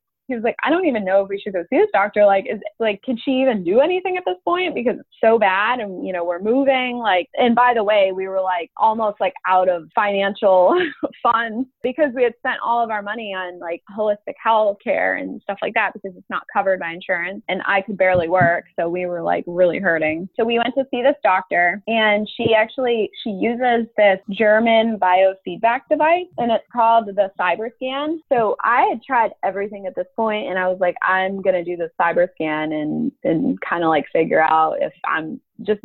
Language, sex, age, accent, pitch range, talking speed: English, female, 20-39, American, 180-235 Hz, 225 wpm